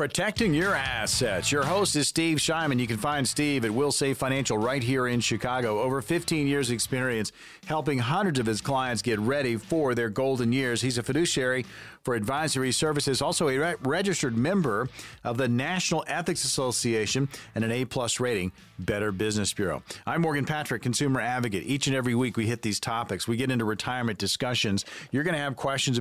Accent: American